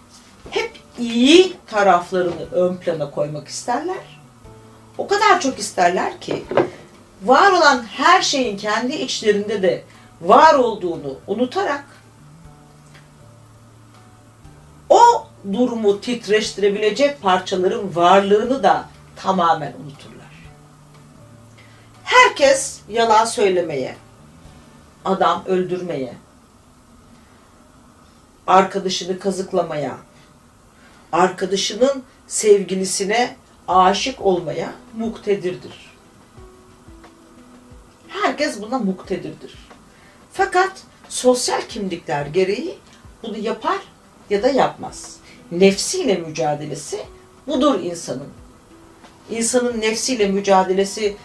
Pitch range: 180-255 Hz